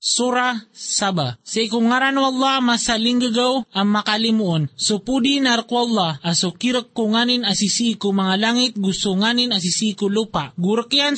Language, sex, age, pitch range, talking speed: Filipino, male, 30-49, 205-245 Hz, 140 wpm